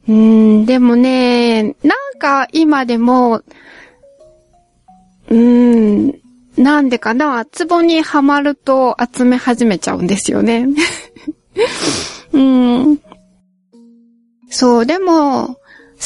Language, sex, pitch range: Japanese, female, 225-330 Hz